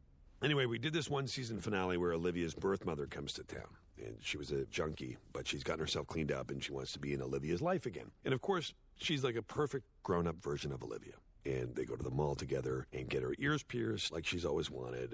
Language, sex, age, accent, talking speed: English, male, 50-69, American, 240 wpm